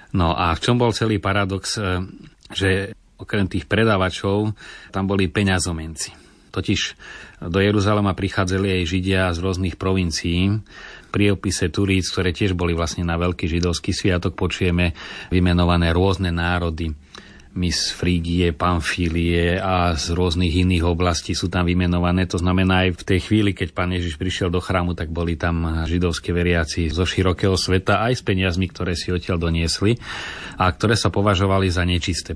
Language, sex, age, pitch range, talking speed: Slovak, male, 30-49, 85-100 Hz, 150 wpm